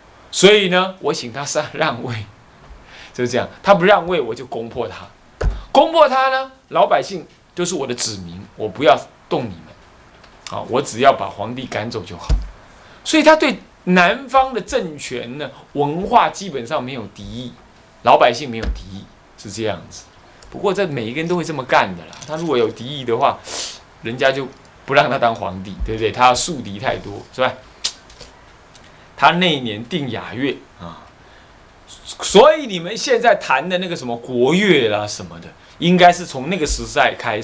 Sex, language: male, Chinese